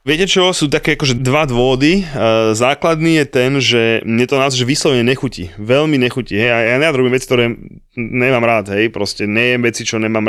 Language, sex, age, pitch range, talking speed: Slovak, male, 20-39, 110-135 Hz, 195 wpm